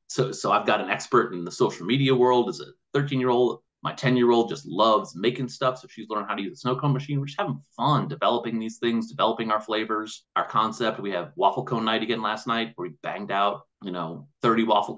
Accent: American